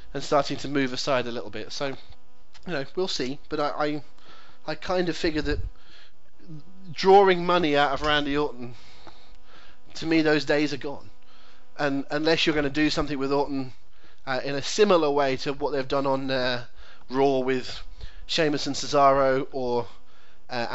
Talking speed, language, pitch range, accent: 175 wpm, English, 125-150 Hz, British